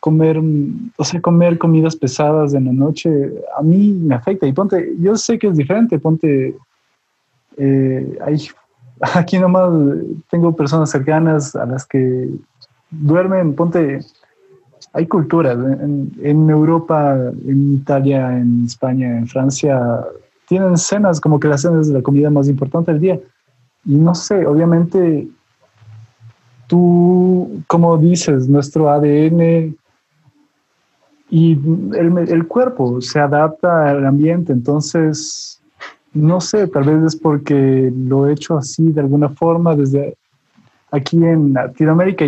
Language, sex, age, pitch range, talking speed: Spanish, male, 20-39, 140-175 Hz, 130 wpm